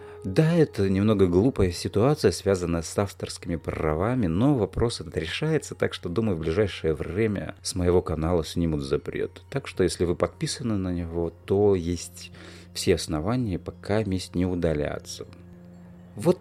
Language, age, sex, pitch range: Russian, 30-49, male, 85-110 Hz